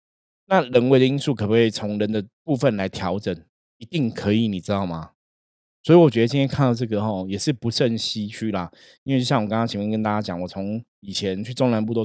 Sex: male